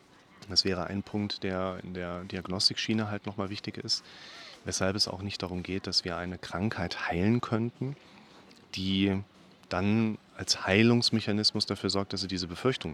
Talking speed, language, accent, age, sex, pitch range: 160 wpm, German, German, 30-49, male, 95-115 Hz